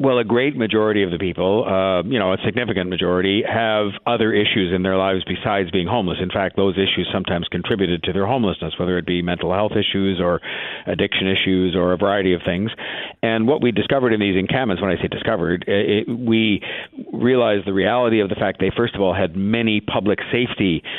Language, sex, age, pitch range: English, male, 50-69, 90-110 Hz